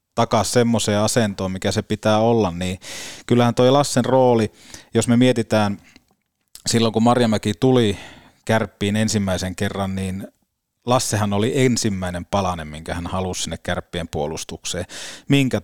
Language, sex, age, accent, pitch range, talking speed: Finnish, male, 30-49, native, 95-115 Hz, 130 wpm